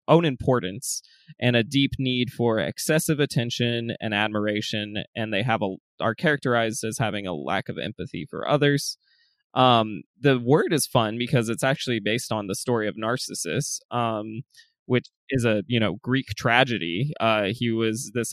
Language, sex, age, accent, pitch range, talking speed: English, male, 20-39, American, 110-135 Hz, 165 wpm